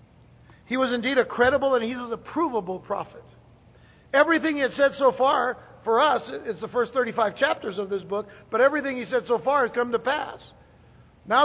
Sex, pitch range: male, 225-285 Hz